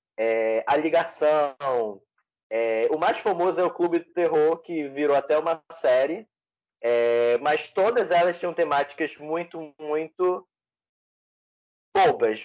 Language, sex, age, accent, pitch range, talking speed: Portuguese, male, 20-39, Brazilian, 135-190 Hz, 125 wpm